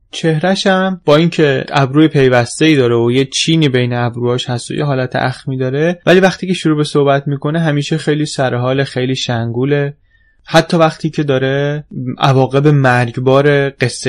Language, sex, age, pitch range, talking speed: Persian, male, 20-39, 115-150 Hz, 160 wpm